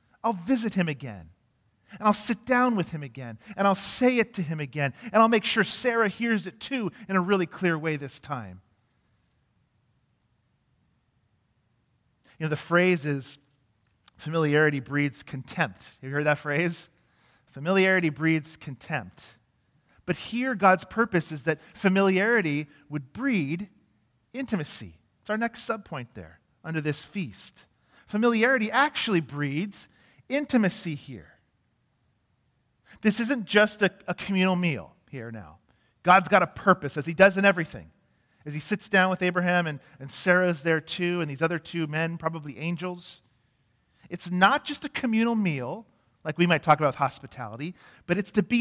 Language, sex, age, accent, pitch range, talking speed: English, male, 40-59, American, 135-195 Hz, 155 wpm